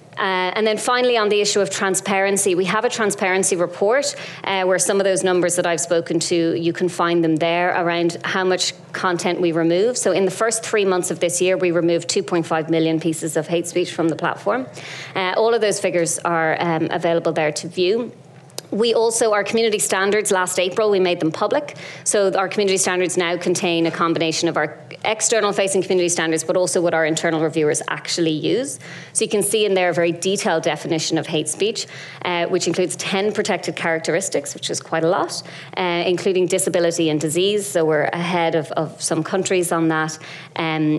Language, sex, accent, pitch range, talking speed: English, female, Irish, 165-190 Hz, 200 wpm